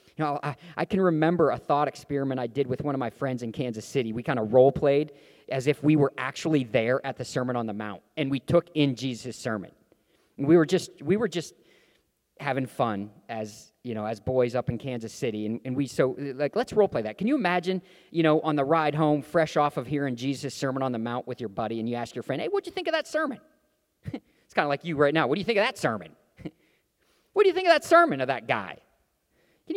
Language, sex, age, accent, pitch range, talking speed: English, male, 40-59, American, 130-185 Hz, 250 wpm